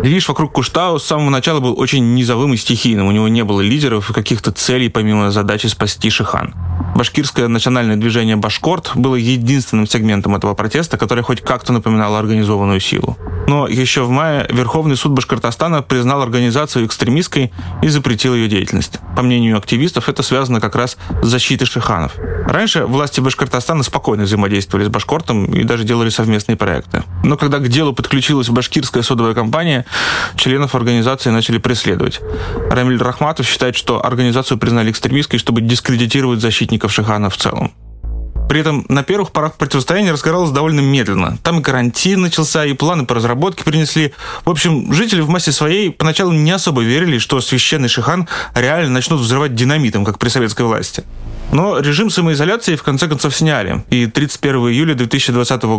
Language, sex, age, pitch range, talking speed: Russian, male, 20-39, 115-145 Hz, 160 wpm